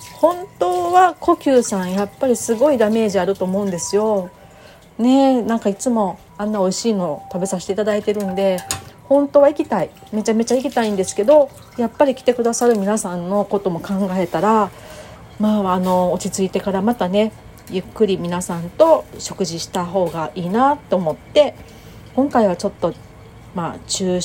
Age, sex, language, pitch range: 40-59, female, Japanese, 180-245 Hz